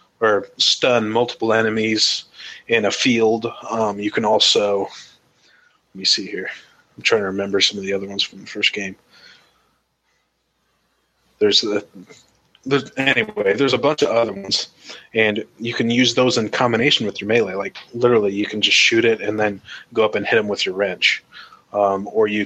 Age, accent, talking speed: 20-39, American, 180 wpm